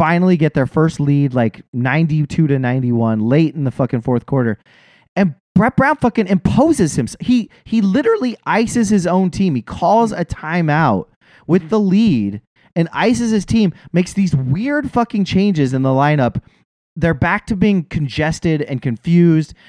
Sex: male